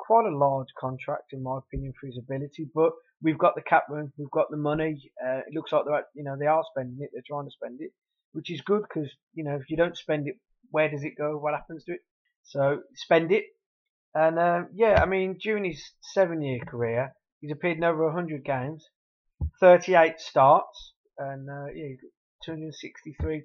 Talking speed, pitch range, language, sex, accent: 205 wpm, 140-175 Hz, English, male, British